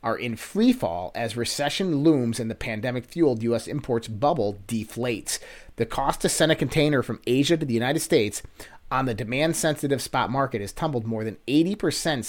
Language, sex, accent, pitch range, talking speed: English, male, American, 110-140 Hz, 170 wpm